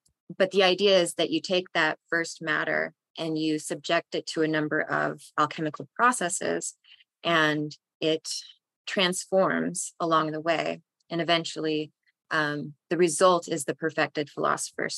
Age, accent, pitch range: 20-39, American, 150-170 Hz